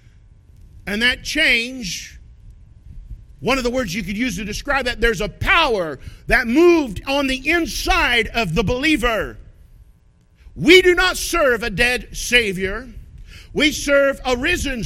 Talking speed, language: 140 wpm, English